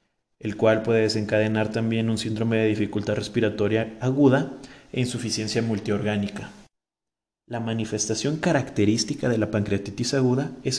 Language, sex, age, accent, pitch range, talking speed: Spanish, male, 30-49, Mexican, 105-125 Hz, 120 wpm